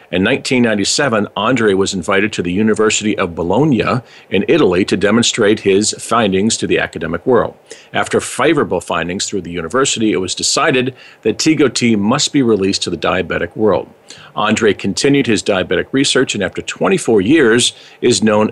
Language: English